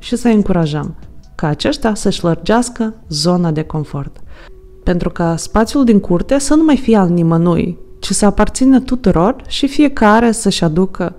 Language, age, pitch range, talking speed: Romanian, 20-39, 170-225 Hz, 155 wpm